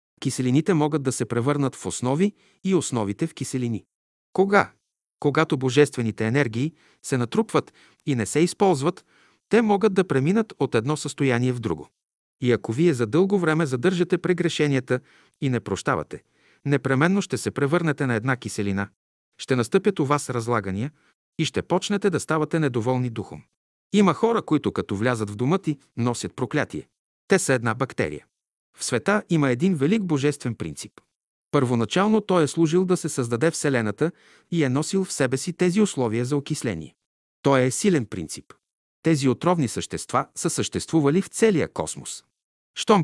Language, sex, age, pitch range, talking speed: Bulgarian, male, 50-69, 125-170 Hz, 155 wpm